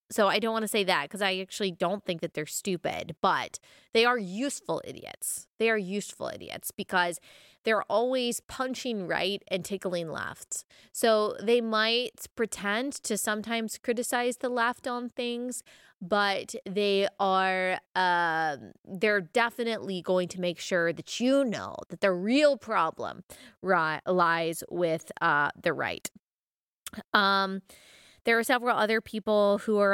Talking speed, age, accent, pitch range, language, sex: 150 wpm, 20-39, American, 185-225 Hz, English, female